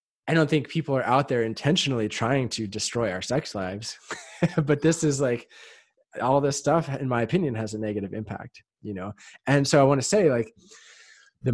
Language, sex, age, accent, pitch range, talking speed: English, male, 20-39, American, 105-145 Hz, 200 wpm